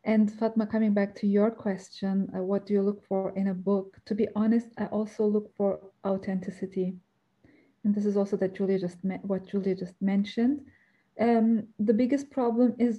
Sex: female